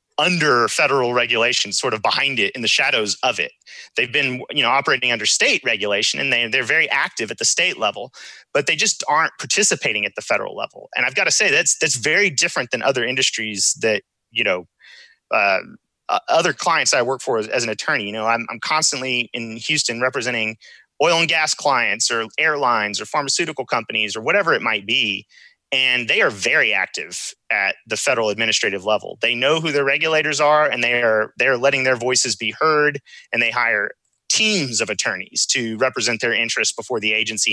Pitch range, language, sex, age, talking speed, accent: 110-135 Hz, English, male, 30-49, 200 wpm, American